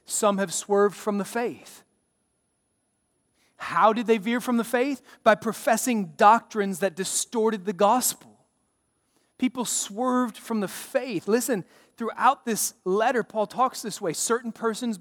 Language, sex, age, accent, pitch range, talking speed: English, male, 30-49, American, 190-225 Hz, 140 wpm